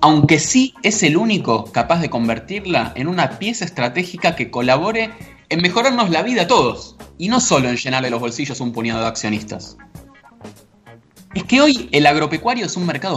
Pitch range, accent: 115-175 Hz, Argentinian